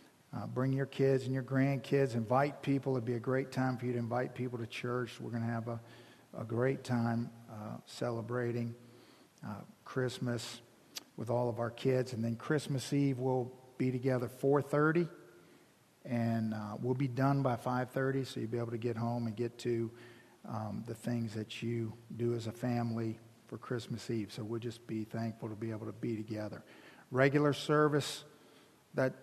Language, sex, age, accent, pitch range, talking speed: English, male, 50-69, American, 120-140 Hz, 185 wpm